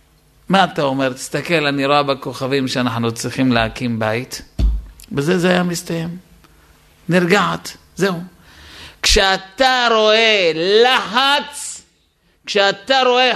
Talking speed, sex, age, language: 100 wpm, male, 50-69, Hebrew